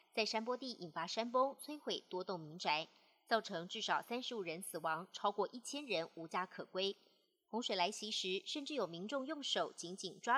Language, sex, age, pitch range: Chinese, male, 30-49, 180-240 Hz